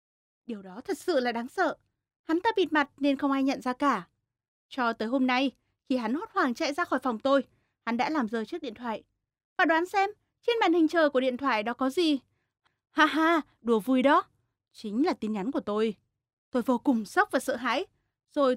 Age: 20-39